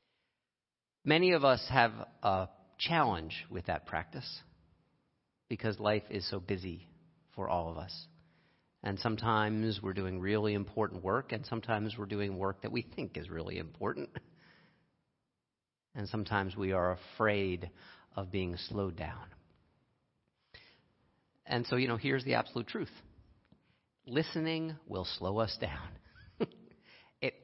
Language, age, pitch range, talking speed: English, 50-69, 95-115 Hz, 130 wpm